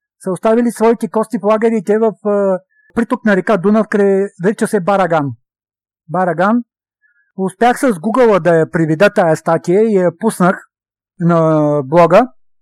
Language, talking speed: Bulgarian, 140 wpm